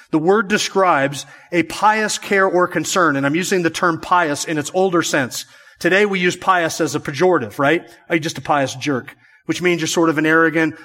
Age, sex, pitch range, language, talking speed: 40-59, male, 160-195 Hz, English, 205 wpm